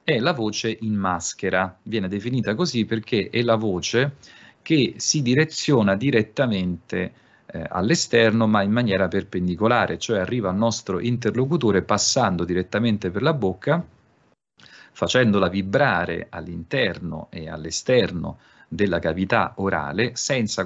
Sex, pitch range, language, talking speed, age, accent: male, 95-120 Hz, Italian, 120 wpm, 40-59, native